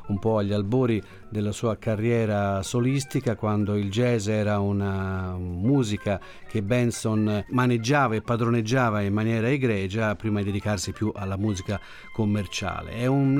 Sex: male